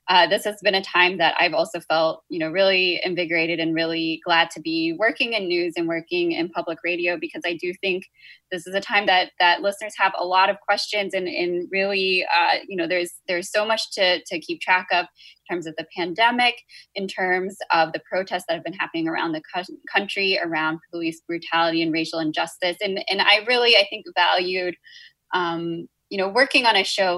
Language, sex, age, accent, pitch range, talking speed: English, female, 20-39, American, 175-210 Hz, 210 wpm